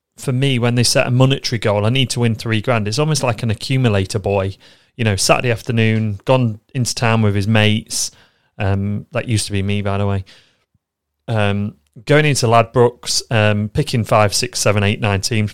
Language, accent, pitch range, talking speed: English, British, 105-125 Hz, 195 wpm